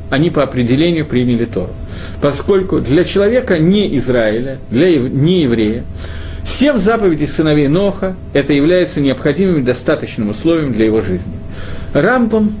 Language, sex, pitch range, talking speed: Russian, male, 115-185 Hz, 130 wpm